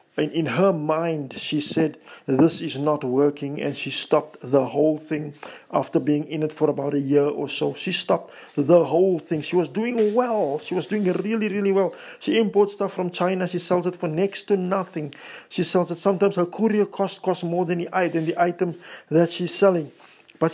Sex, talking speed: male, 200 wpm